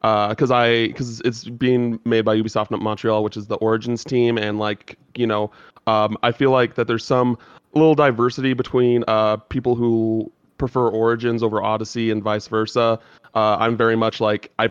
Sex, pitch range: male, 110-120 Hz